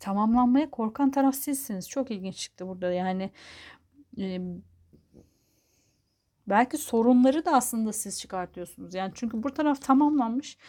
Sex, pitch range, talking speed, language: female, 195-260 Hz, 120 wpm, Turkish